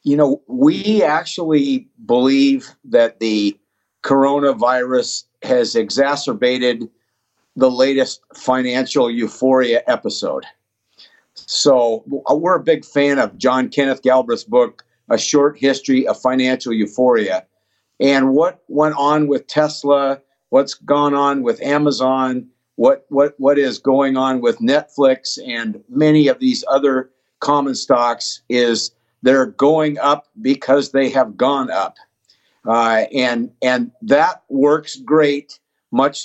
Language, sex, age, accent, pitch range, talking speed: English, male, 50-69, American, 130-155 Hz, 120 wpm